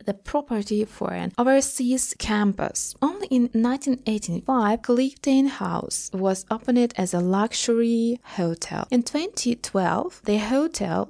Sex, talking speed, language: female, 115 wpm, English